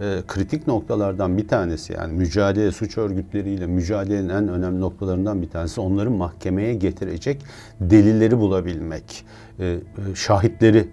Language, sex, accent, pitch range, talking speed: Turkish, male, native, 95-110 Hz, 110 wpm